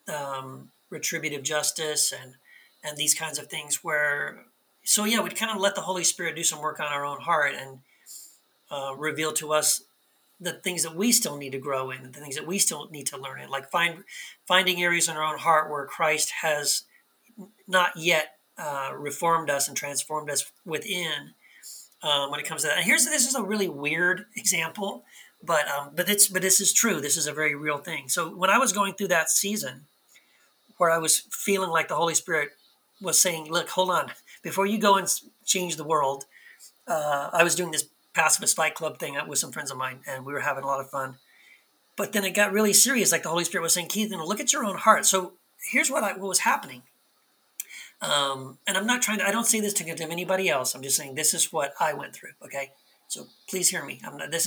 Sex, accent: male, American